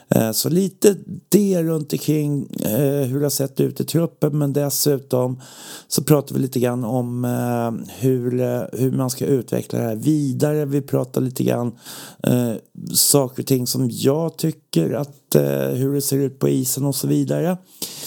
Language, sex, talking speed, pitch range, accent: Swedish, male, 175 wpm, 105-150 Hz, native